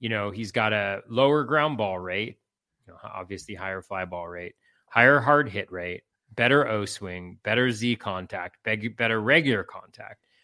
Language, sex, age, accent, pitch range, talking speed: English, male, 30-49, American, 105-135 Hz, 165 wpm